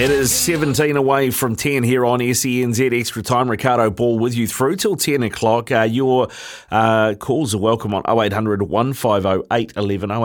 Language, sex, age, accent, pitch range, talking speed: English, male, 30-49, Australian, 95-120 Hz, 180 wpm